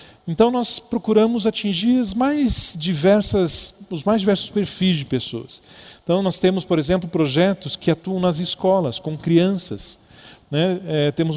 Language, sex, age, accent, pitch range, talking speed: Portuguese, male, 40-59, Brazilian, 155-190 Hz, 150 wpm